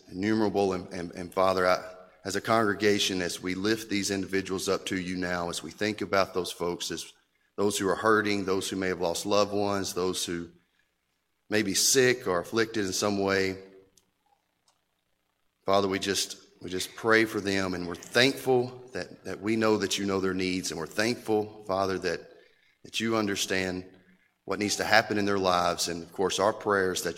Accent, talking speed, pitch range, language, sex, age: American, 190 wpm, 90-105 Hz, English, male, 30-49